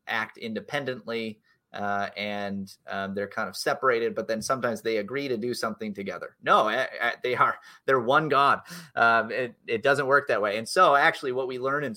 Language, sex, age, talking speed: English, male, 30-49, 190 wpm